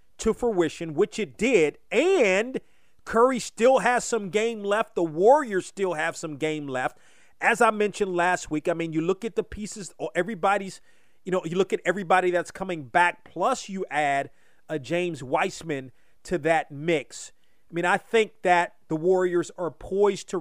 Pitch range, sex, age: 165-215 Hz, male, 40-59